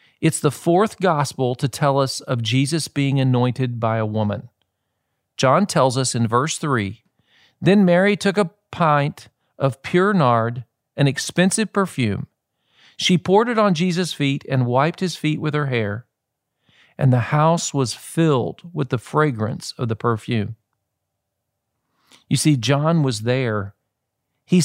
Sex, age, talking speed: male, 40-59, 150 wpm